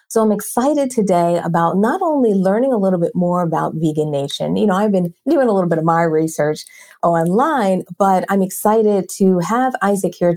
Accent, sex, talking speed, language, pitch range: American, female, 195 wpm, English, 165-205 Hz